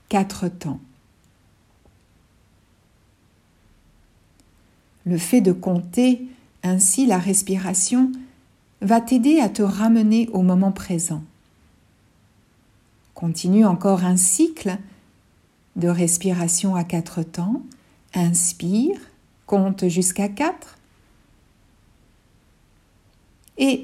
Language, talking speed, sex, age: French, 80 wpm, female, 60-79